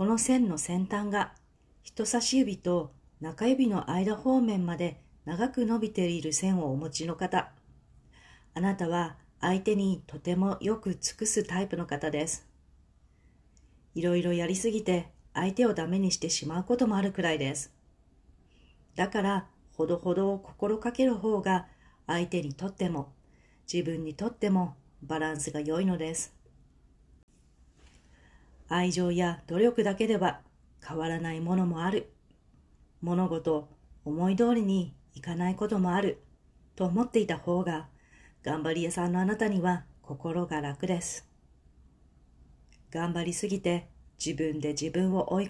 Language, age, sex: Japanese, 40-59, female